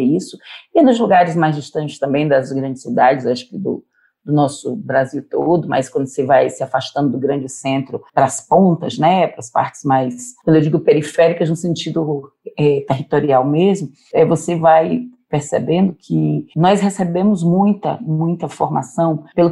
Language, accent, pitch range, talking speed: Portuguese, Brazilian, 145-210 Hz, 165 wpm